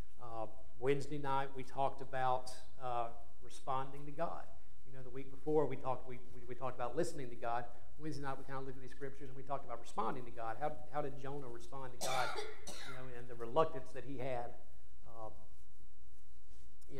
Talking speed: 200 wpm